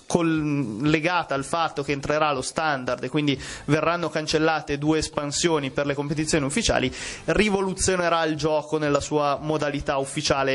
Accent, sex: native, male